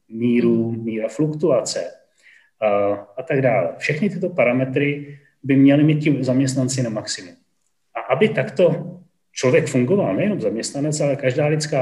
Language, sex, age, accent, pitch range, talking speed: Czech, male, 30-49, native, 125-150 Hz, 135 wpm